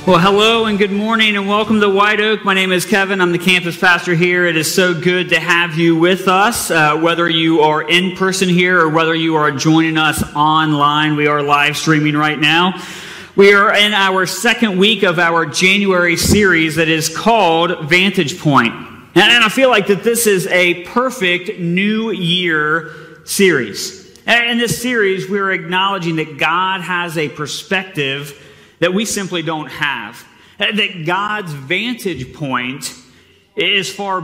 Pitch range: 160-195 Hz